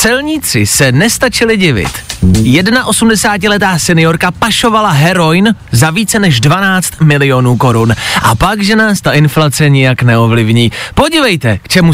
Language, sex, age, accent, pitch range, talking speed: Czech, male, 30-49, native, 140-230 Hz, 135 wpm